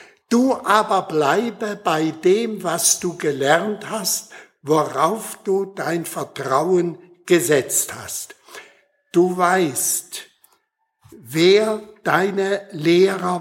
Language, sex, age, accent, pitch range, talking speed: German, male, 60-79, German, 165-205 Hz, 90 wpm